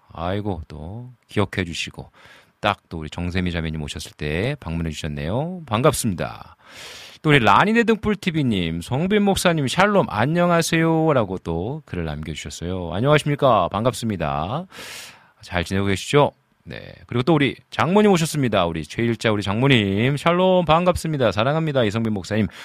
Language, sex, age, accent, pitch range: Korean, male, 40-59, native, 90-150 Hz